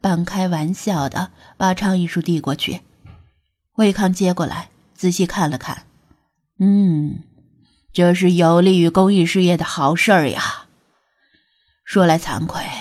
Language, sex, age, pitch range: Chinese, female, 20-39, 155-205 Hz